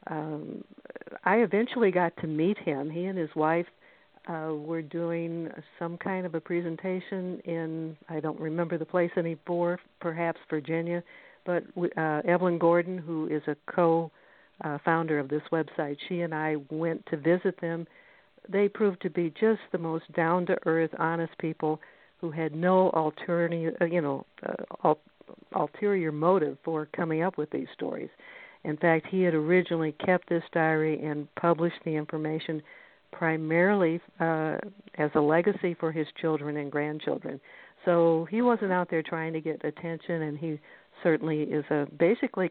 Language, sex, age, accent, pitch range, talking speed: English, female, 60-79, American, 155-180 Hz, 150 wpm